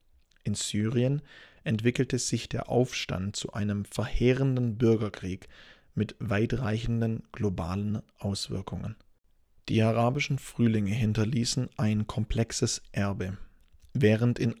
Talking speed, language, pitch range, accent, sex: 95 wpm, English, 105-120 Hz, German, male